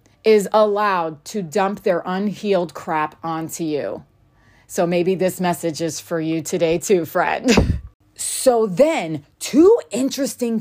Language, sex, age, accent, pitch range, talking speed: English, female, 30-49, American, 160-235 Hz, 130 wpm